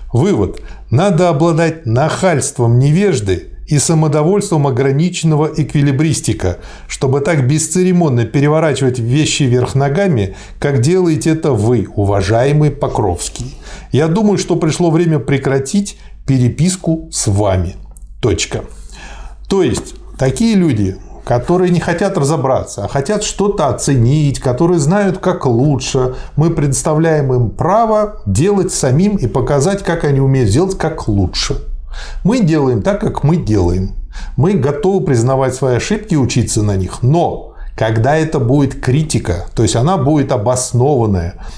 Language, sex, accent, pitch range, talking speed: Russian, male, native, 115-165 Hz, 125 wpm